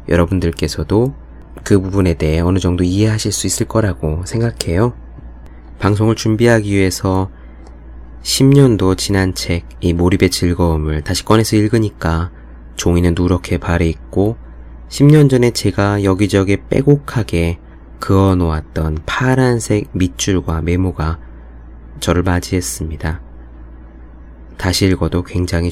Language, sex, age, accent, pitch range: Korean, male, 20-39, native, 70-100 Hz